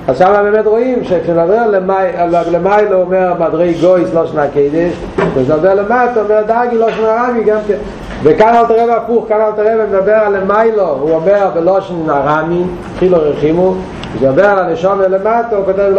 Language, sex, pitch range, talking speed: Hebrew, male, 150-195 Hz, 130 wpm